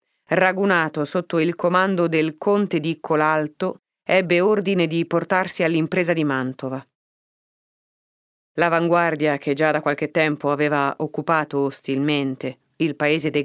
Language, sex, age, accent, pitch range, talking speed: Italian, female, 30-49, native, 140-165 Hz, 120 wpm